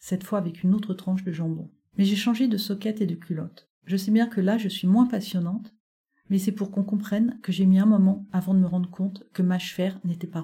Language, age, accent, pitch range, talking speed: French, 50-69, French, 185-210 Hz, 255 wpm